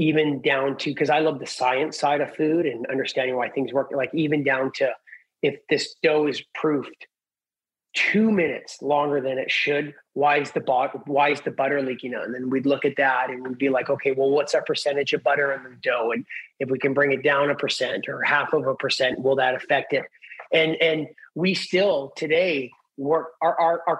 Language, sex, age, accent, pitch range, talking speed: English, male, 30-49, American, 135-160 Hz, 220 wpm